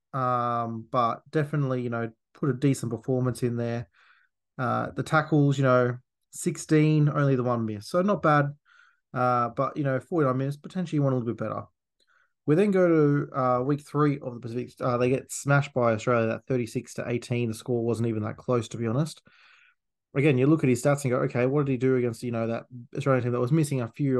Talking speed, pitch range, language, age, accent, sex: 220 wpm, 120-145 Hz, English, 20-39, Australian, male